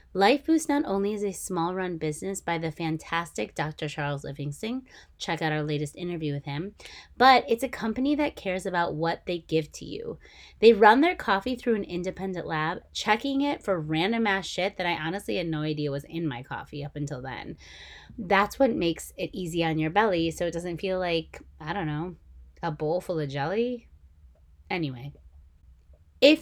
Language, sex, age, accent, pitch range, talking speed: English, female, 20-39, American, 150-215 Hz, 195 wpm